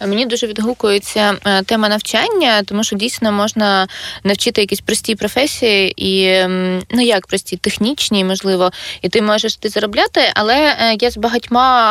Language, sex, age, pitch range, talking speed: Ukrainian, female, 20-39, 205-245 Hz, 140 wpm